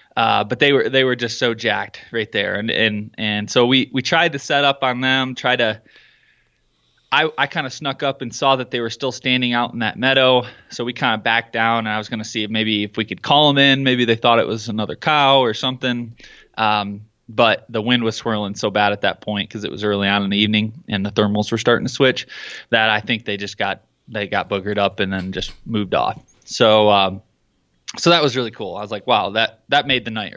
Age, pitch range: 20-39, 110-130 Hz